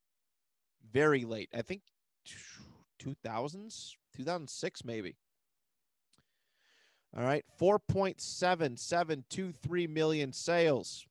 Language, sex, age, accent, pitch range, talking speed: English, male, 30-49, American, 120-160 Hz, 65 wpm